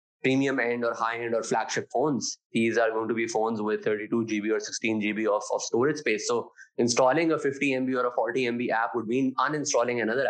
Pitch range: 110-130 Hz